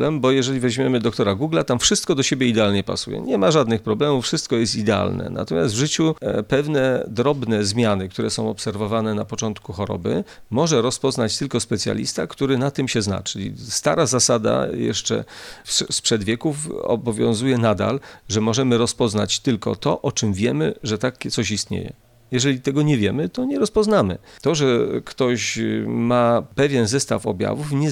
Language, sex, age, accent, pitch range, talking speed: Polish, male, 40-59, native, 110-135 Hz, 160 wpm